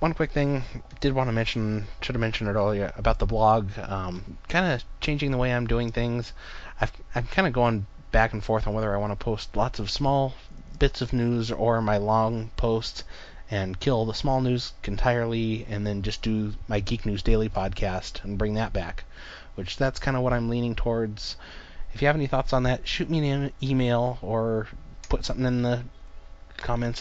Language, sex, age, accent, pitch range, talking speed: English, male, 20-39, American, 95-120 Hz, 205 wpm